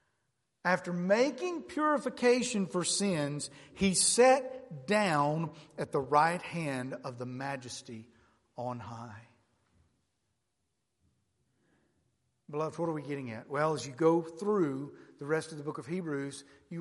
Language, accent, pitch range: English, American, 155-235 Hz